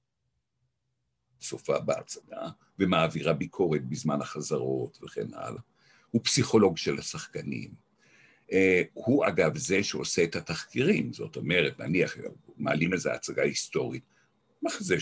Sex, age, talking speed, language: male, 60-79, 105 wpm, Hebrew